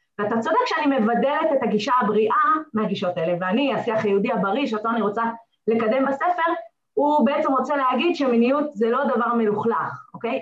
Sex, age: female, 20-39